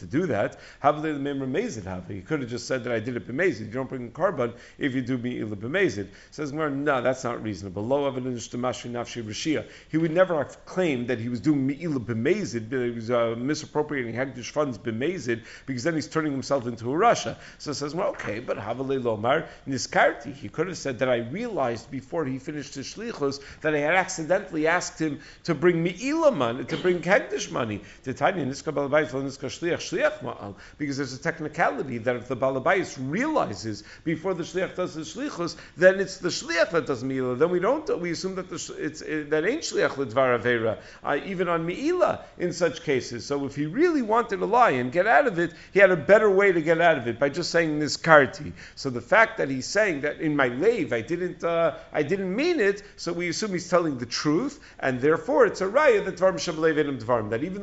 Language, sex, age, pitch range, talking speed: English, male, 50-69, 125-175 Hz, 200 wpm